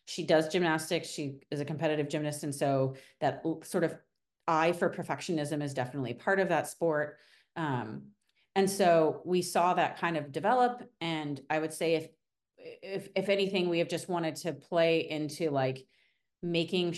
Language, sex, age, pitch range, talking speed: English, female, 30-49, 145-180 Hz, 170 wpm